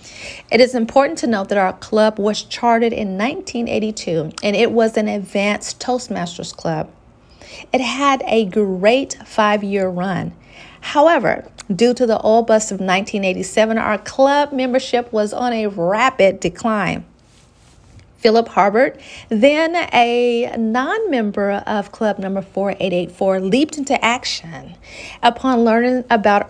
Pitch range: 200-255 Hz